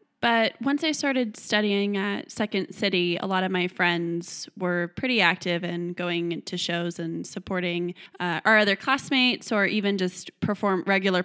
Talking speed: 165 wpm